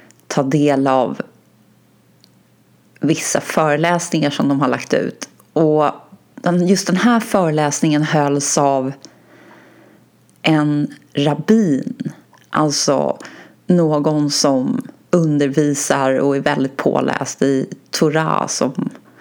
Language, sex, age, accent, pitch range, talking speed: Swedish, female, 30-49, native, 140-170 Hz, 95 wpm